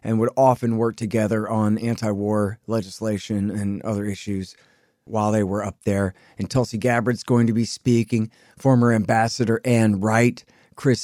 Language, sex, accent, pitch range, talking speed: English, male, American, 105-120 Hz, 150 wpm